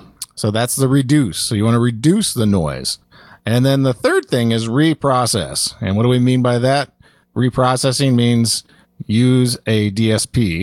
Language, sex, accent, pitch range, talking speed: English, male, American, 100-125 Hz, 170 wpm